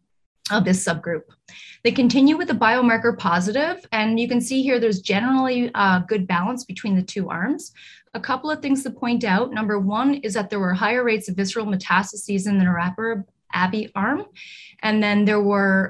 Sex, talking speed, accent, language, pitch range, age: female, 195 wpm, American, English, 185-225 Hz, 30-49